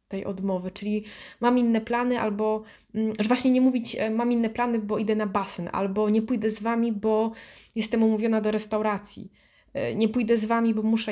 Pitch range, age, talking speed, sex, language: 210-250 Hz, 20-39, 185 wpm, female, Polish